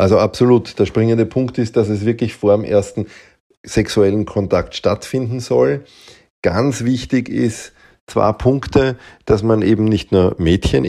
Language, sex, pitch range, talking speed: German, male, 90-105 Hz, 150 wpm